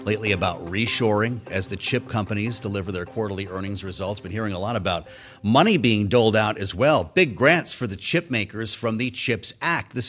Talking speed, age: 200 wpm, 30-49